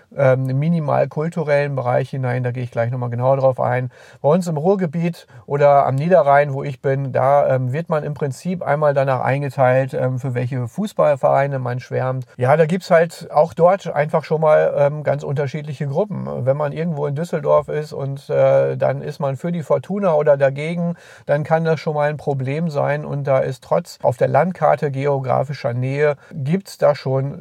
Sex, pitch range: male, 130-155 Hz